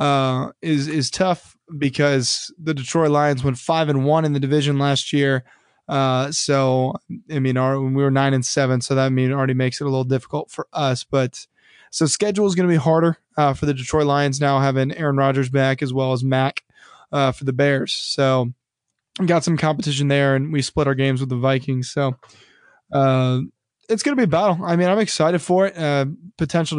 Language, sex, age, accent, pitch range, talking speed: English, male, 20-39, American, 135-165 Hz, 215 wpm